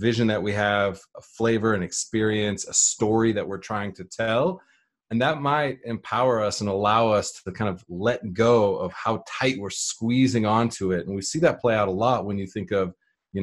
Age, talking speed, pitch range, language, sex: 30-49, 215 wpm, 95-120 Hz, English, male